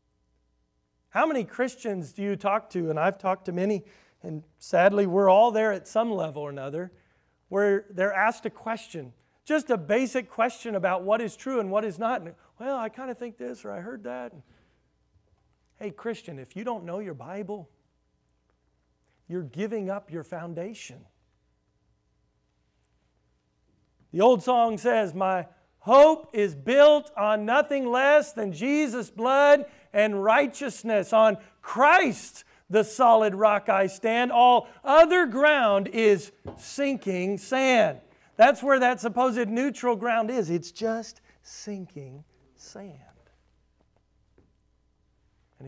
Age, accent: 40-59, American